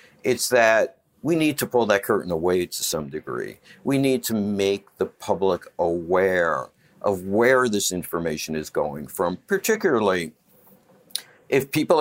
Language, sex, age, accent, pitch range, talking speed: English, male, 60-79, American, 100-140 Hz, 145 wpm